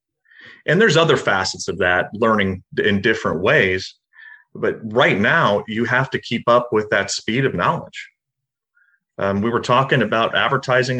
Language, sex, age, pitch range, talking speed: English, male, 30-49, 110-145 Hz, 160 wpm